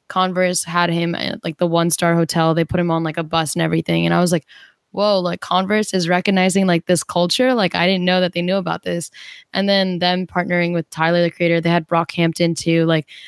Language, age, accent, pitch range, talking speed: English, 10-29, American, 170-195 Hz, 240 wpm